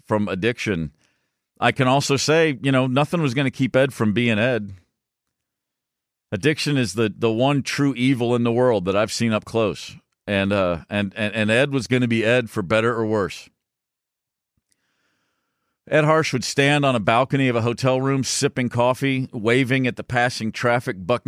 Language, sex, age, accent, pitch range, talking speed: English, male, 50-69, American, 110-135 Hz, 185 wpm